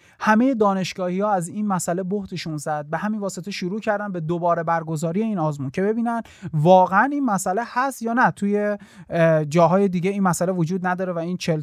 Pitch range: 155-195 Hz